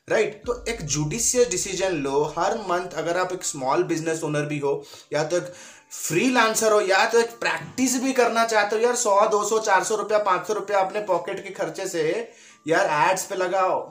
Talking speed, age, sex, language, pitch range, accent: 210 wpm, 20-39, male, Hindi, 135-195 Hz, native